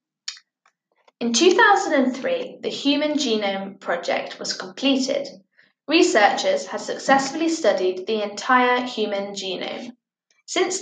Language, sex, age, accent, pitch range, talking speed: English, female, 10-29, British, 205-270 Hz, 95 wpm